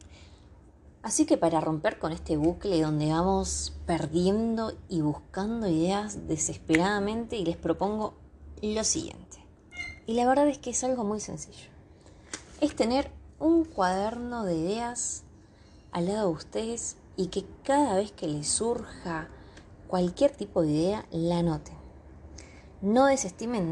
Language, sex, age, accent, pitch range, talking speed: Spanish, female, 20-39, Argentinian, 155-205 Hz, 130 wpm